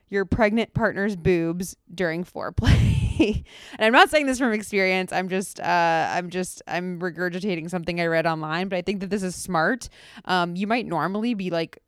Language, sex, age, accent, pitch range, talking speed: English, female, 20-39, American, 175-215 Hz, 185 wpm